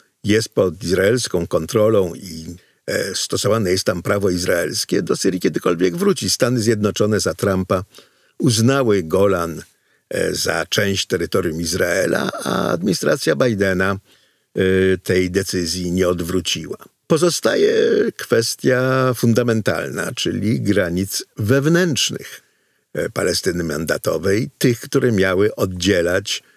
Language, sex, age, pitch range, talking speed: Polish, male, 50-69, 95-135 Hz, 95 wpm